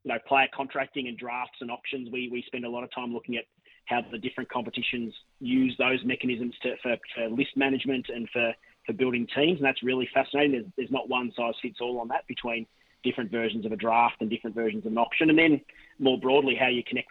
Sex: male